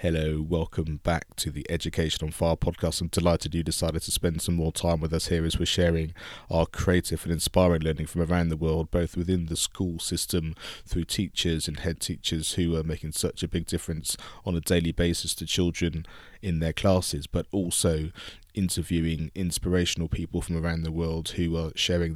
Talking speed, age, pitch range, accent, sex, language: 190 wpm, 20-39, 80-90 Hz, British, male, English